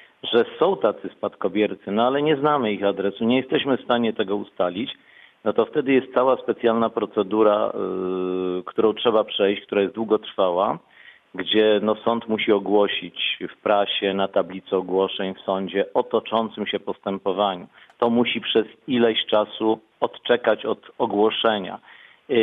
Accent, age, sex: native, 50-69, male